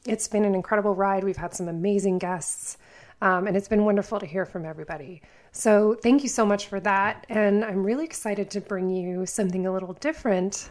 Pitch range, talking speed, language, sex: 195-220 Hz, 205 wpm, English, female